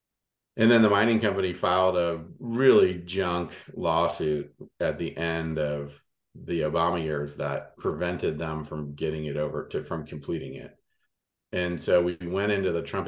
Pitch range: 80-105 Hz